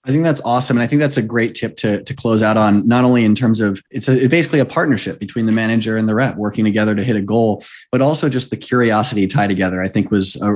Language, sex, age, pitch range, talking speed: English, male, 20-39, 105-130 Hz, 285 wpm